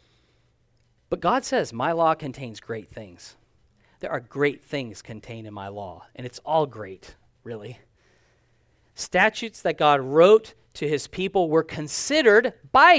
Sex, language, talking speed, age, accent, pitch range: male, English, 145 wpm, 40-59, American, 125-190 Hz